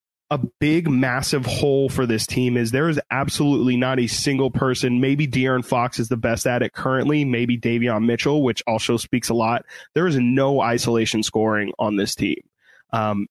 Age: 20-39